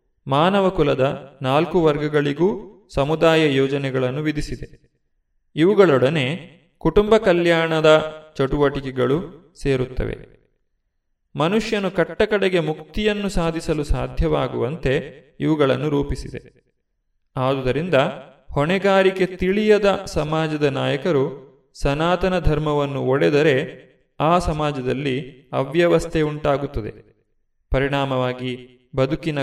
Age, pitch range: 30-49, 135-165 Hz